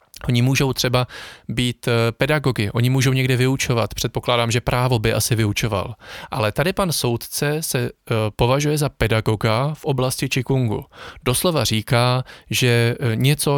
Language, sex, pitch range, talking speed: Czech, male, 115-140 Hz, 135 wpm